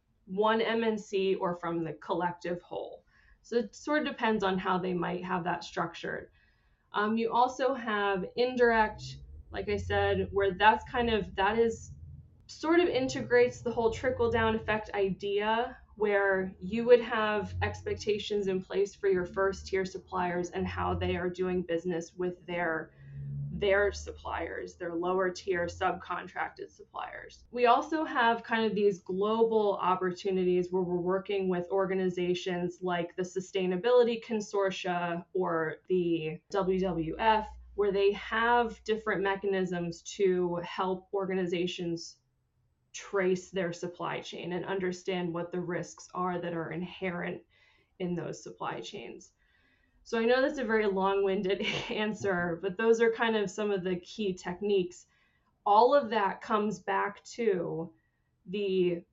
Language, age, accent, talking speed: English, 20-39, American, 140 wpm